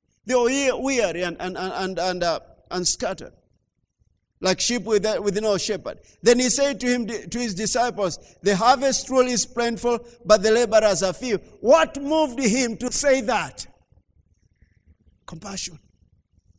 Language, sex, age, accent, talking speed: English, male, 50-69, South African, 150 wpm